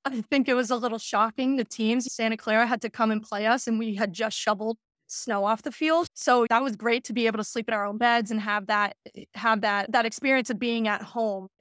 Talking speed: 260 wpm